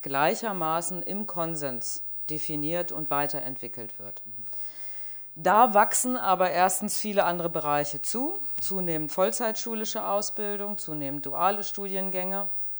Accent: German